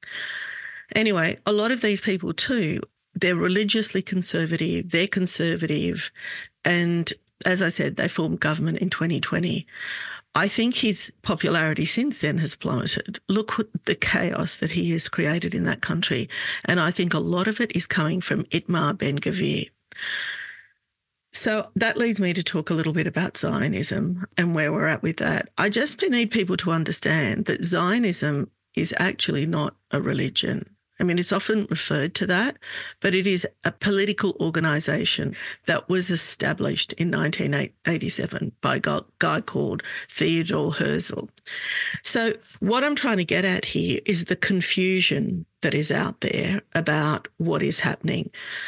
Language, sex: English, female